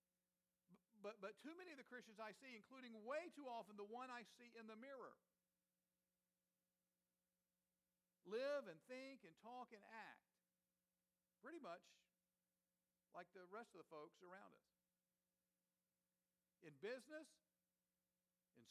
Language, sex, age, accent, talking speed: English, male, 50-69, American, 130 wpm